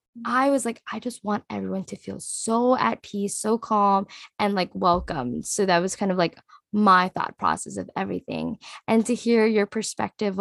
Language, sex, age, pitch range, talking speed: English, female, 10-29, 185-230 Hz, 190 wpm